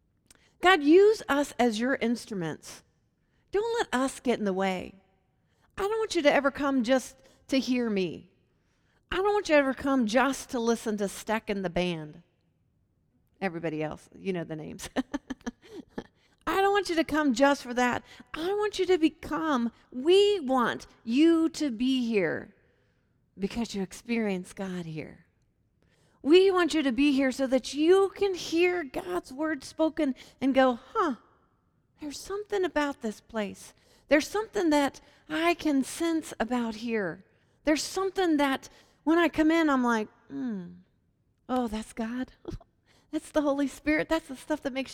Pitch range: 230-320 Hz